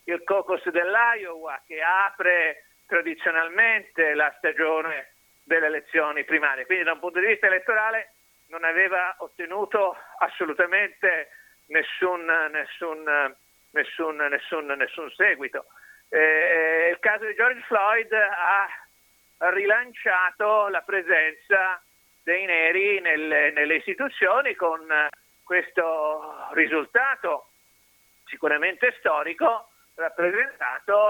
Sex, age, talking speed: male, 50-69, 95 wpm